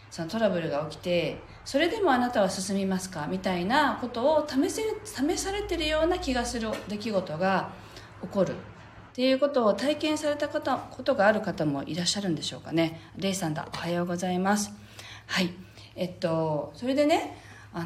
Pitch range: 165-275 Hz